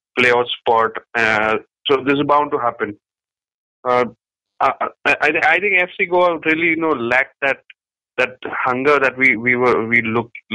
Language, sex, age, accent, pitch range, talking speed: English, male, 20-39, Indian, 110-130 Hz, 165 wpm